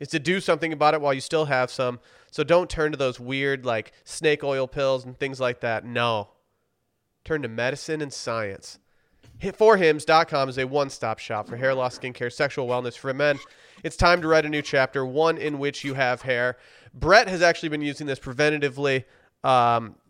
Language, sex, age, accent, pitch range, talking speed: English, male, 30-49, American, 125-155 Hz, 195 wpm